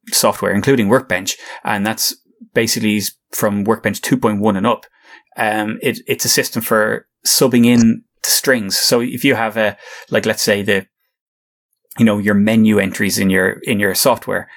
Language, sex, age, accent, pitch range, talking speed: English, male, 20-39, Irish, 105-125 Hz, 165 wpm